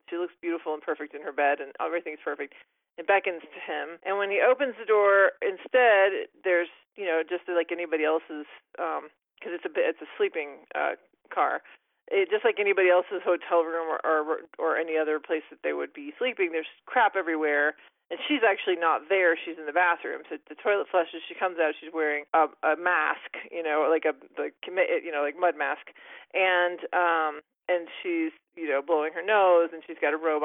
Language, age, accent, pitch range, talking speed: English, 30-49, American, 160-240 Hz, 205 wpm